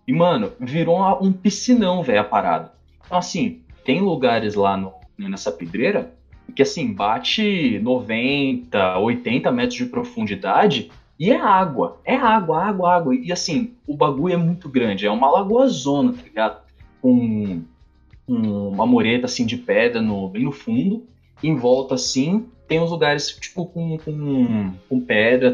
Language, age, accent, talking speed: Portuguese, 20-39, Brazilian, 160 wpm